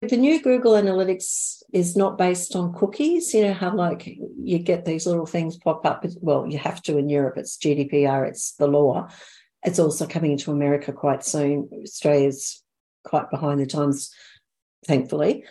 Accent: Australian